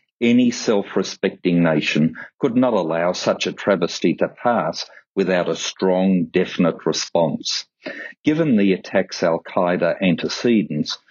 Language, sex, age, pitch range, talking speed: English, male, 50-69, 85-110 Hz, 115 wpm